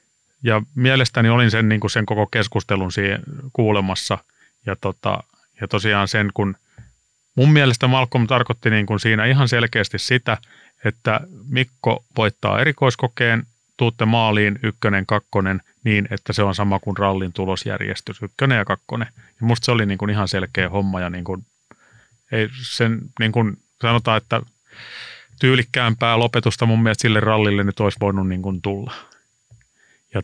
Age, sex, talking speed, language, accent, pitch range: 30-49, male, 155 wpm, Finnish, native, 100-125 Hz